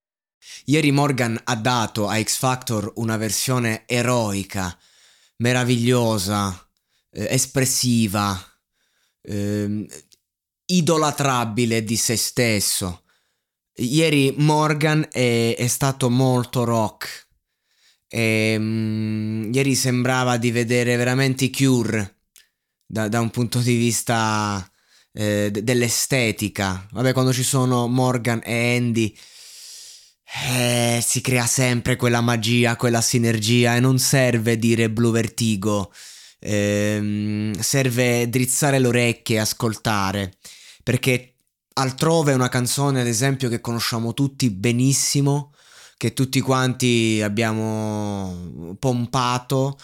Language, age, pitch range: Italian, 20-39, 110-130 Hz